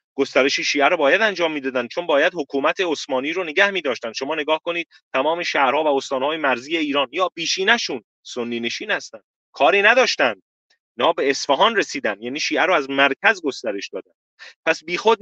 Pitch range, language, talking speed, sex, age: 125-165 Hz, Persian, 165 wpm, male, 30-49